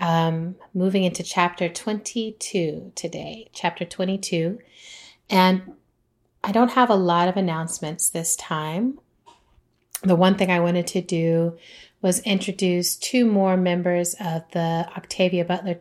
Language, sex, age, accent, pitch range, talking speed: English, female, 30-49, American, 170-190 Hz, 130 wpm